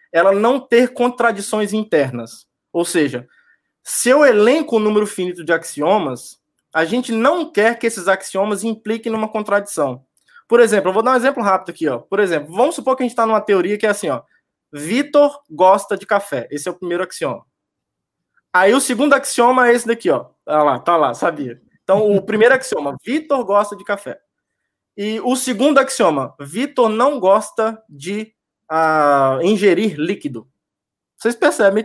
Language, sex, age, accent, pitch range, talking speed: Portuguese, male, 20-39, Brazilian, 175-255 Hz, 170 wpm